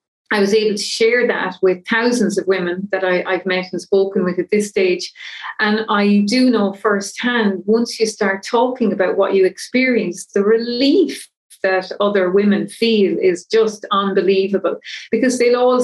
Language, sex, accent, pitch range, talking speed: English, female, Irish, 190-220 Hz, 165 wpm